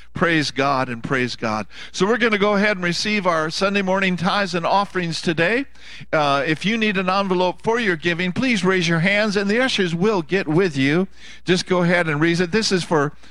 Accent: American